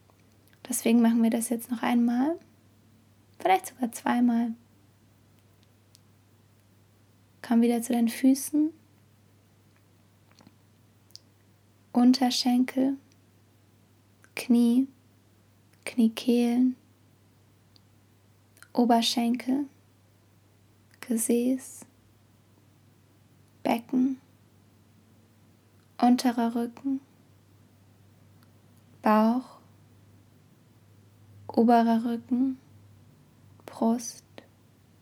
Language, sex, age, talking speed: German, female, 20-39, 45 wpm